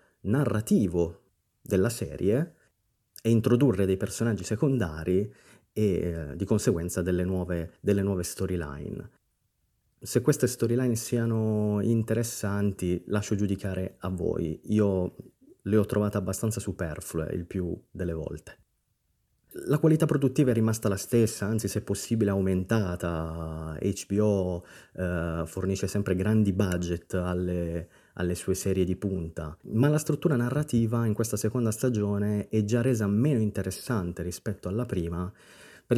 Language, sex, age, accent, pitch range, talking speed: Italian, male, 30-49, native, 95-120 Hz, 125 wpm